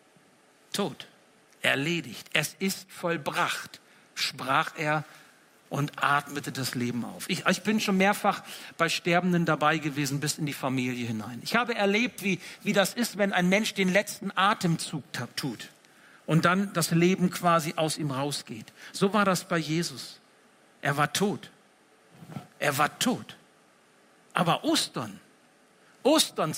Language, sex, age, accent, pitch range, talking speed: German, male, 60-79, German, 170-245 Hz, 140 wpm